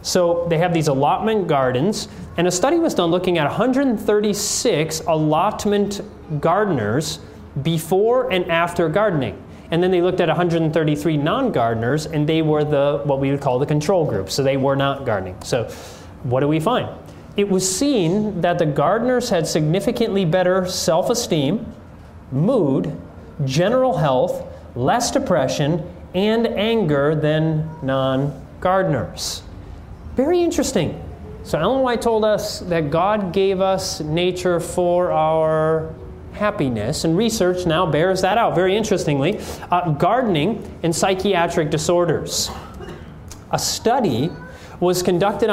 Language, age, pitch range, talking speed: English, 30-49, 150-195 Hz, 130 wpm